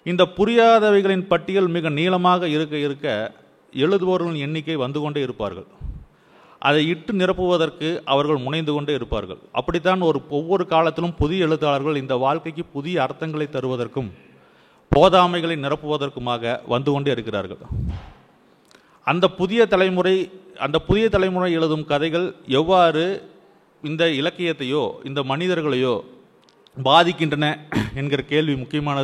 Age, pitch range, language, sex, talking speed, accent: 30-49, 135-175 Hz, Tamil, male, 105 wpm, native